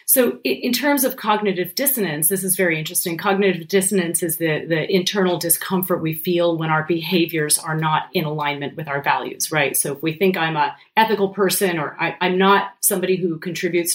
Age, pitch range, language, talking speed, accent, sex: 30-49, 160-195 Hz, English, 195 wpm, American, female